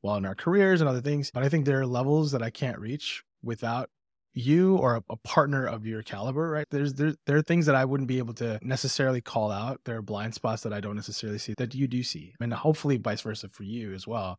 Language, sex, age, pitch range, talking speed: English, male, 20-39, 110-140 Hz, 260 wpm